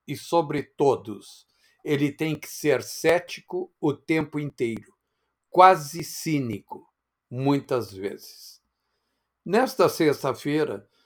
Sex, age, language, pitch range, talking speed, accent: male, 60-79, Portuguese, 135-160 Hz, 90 wpm, Brazilian